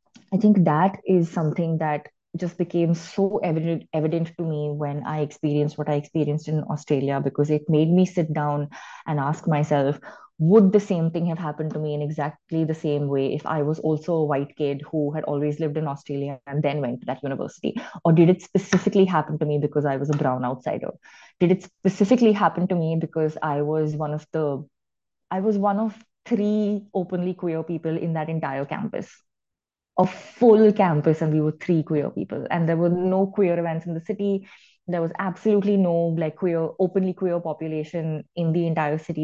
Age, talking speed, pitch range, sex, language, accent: 20-39, 200 wpm, 150-185 Hz, female, English, Indian